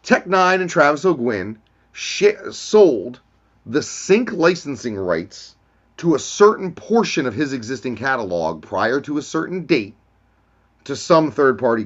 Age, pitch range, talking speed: 30-49, 110-175 Hz, 135 wpm